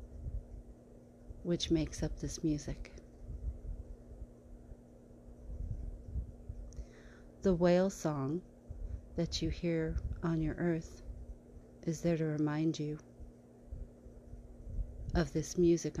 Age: 40-59